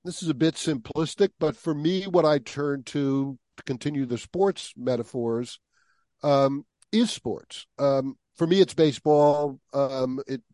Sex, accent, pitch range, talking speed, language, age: male, American, 130-160 Hz, 155 wpm, English, 50-69